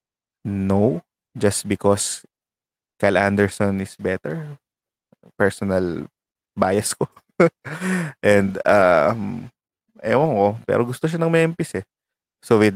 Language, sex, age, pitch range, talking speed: English, male, 20-39, 100-120 Hz, 105 wpm